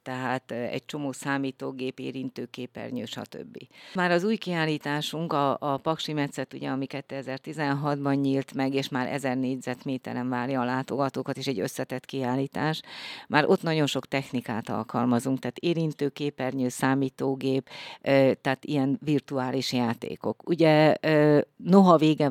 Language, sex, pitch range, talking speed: Hungarian, female, 130-150 Hz, 120 wpm